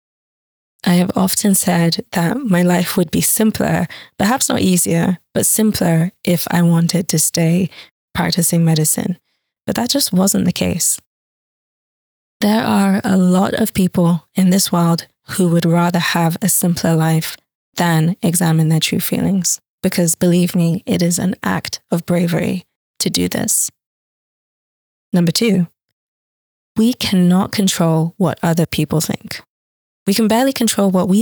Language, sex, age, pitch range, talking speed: English, female, 20-39, 170-195 Hz, 145 wpm